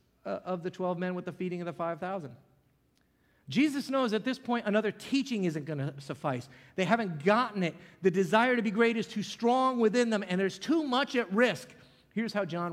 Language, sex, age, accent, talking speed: English, male, 40-59, American, 210 wpm